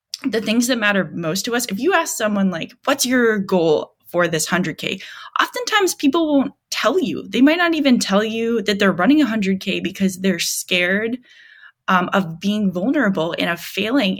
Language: English